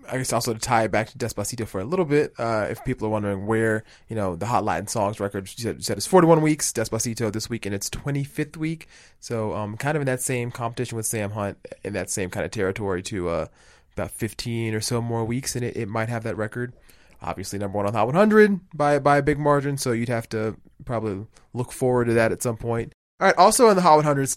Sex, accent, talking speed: male, American, 250 wpm